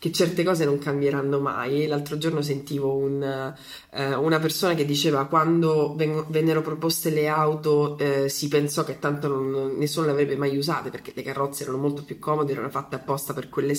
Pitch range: 140-165 Hz